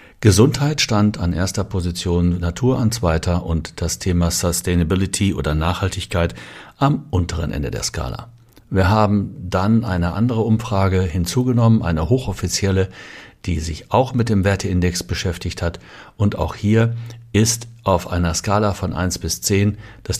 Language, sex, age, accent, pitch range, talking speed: German, male, 60-79, German, 90-115 Hz, 145 wpm